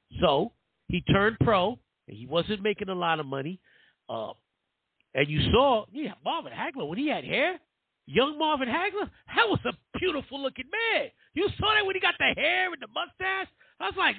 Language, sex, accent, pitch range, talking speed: English, male, American, 140-220 Hz, 185 wpm